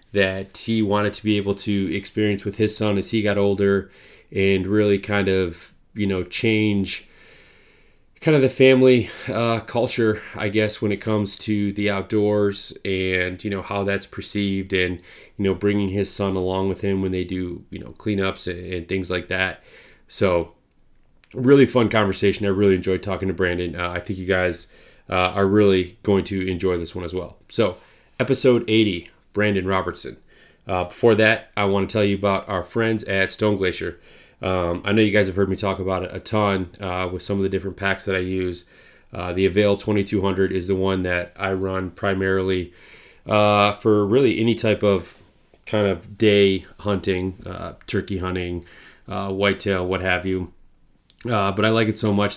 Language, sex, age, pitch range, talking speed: English, male, 20-39, 95-105 Hz, 190 wpm